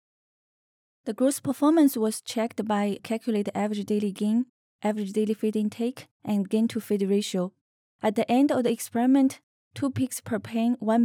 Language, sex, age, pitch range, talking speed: English, female, 20-39, 205-245 Hz, 165 wpm